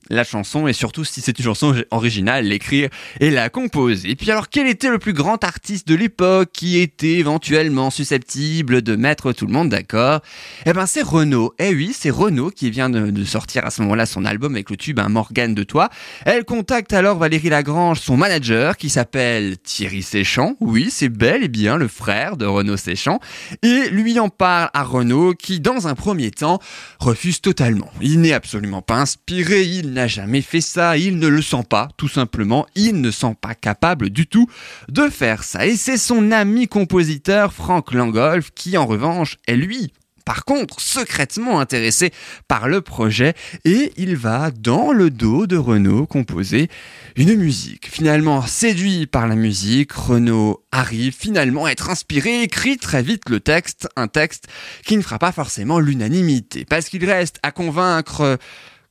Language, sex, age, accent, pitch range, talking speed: French, male, 20-39, French, 120-180 Hz, 180 wpm